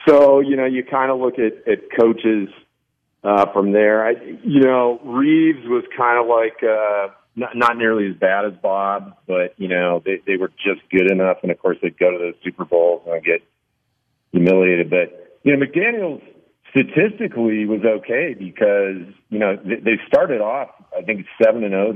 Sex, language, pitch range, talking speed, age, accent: male, English, 90-115 Hz, 185 wpm, 40-59, American